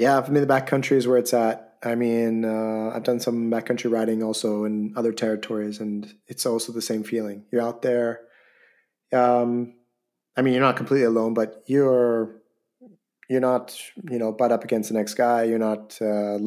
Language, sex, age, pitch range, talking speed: English, male, 30-49, 110-125 Hz, 195 wpm